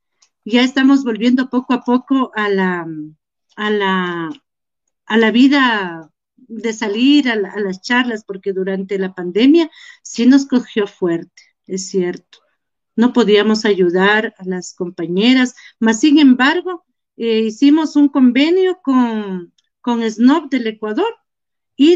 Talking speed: 135 wpm